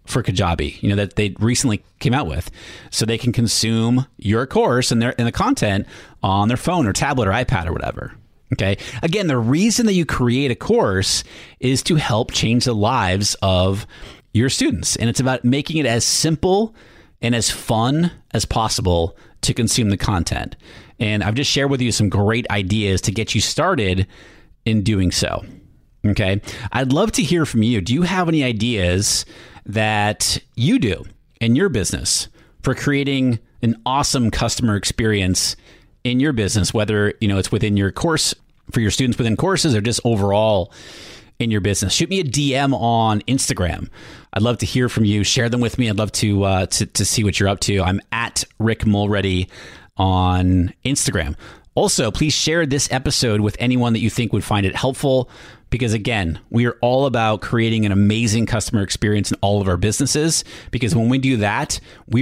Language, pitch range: English, 100-125 Hz